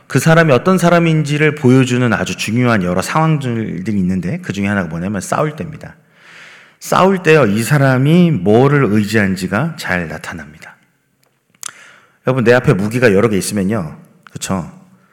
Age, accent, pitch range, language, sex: 40-59, native, 100-155 Hz, Korean, male